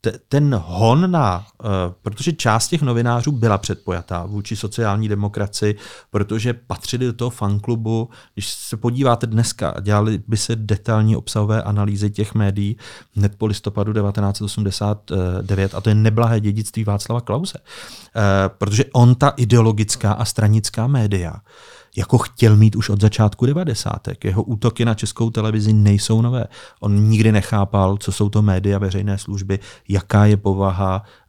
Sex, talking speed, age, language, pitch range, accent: male, 140 wpm, 40-59, Czech, 105-130 Hz, native